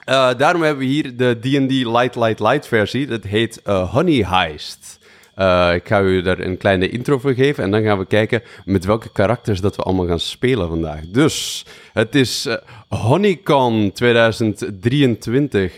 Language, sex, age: Dutch, male, 30-49